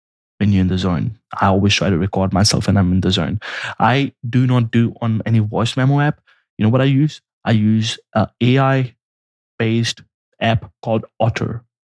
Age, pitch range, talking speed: 20-39, 105-120 Hz, 185 wpm